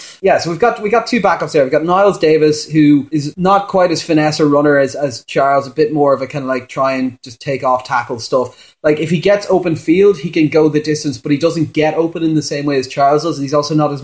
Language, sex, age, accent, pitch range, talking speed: English, male, 30-49, Irish, 140-165 Hz, 285 wpm